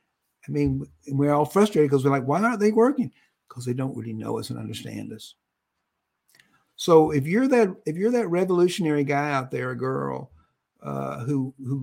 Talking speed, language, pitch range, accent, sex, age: 180 wpm, English, 135-195 Hz, American, male, 50-69